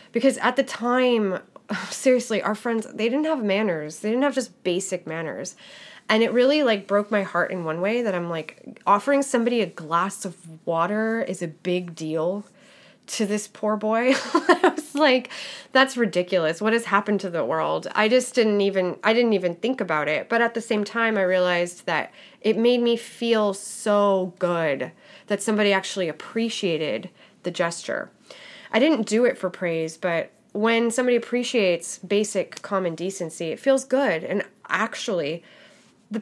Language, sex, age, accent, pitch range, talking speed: English, female, 20-39, American, 180-240 Hz, 170 wpm